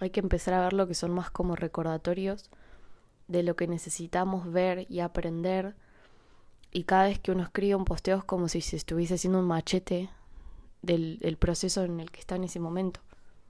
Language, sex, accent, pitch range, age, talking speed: Spanish, female, Argentinian, 175-210 Hz, 20-39, 195 wpm